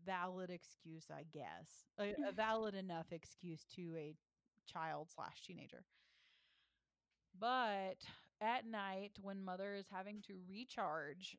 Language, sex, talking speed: English, female, 120 wpm